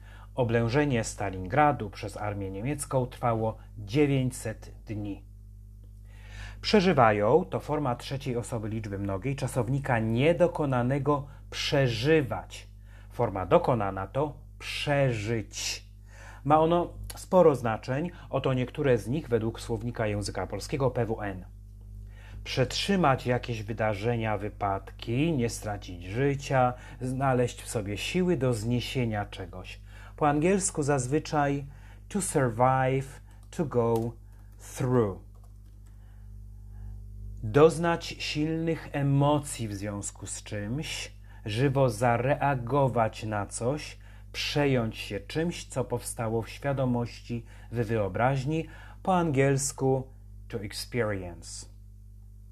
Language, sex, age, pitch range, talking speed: Polish, male, 30-49, 100-130 Hz, 95 wpm